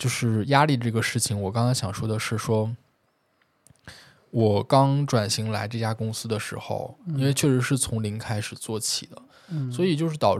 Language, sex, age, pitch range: Chinese, male, 10-29, 110-130 Hz